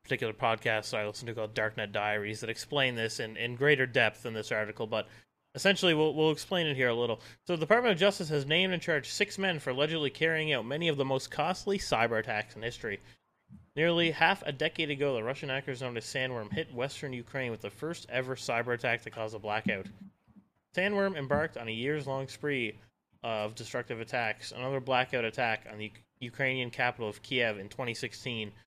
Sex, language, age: male, English, 30-49